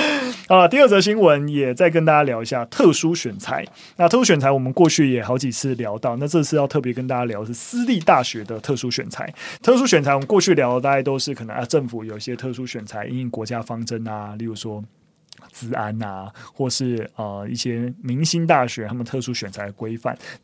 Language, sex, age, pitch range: Chinese, male, 20-39, 120-155 Hz